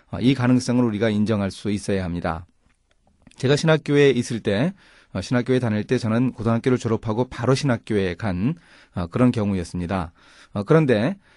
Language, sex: Korean, male